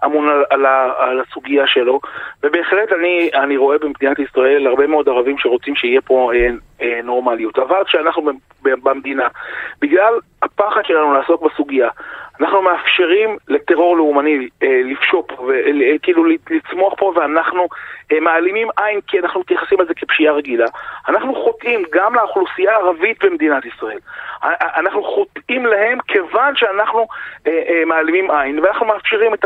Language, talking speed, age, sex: Hebrew, 145 wpm, 30-49, male